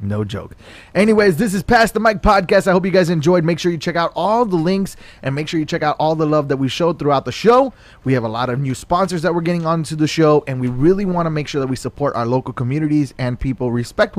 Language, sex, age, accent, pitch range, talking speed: English, male, 20-39, American, 130-175 Hz, 280 wpm